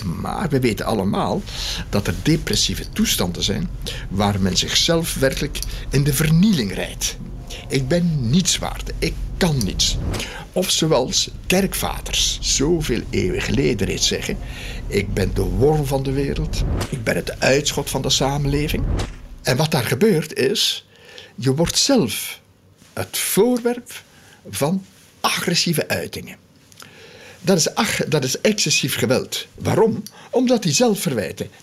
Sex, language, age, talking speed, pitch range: male, Dutch, 60-79, 135 wpm, 110-175 Hz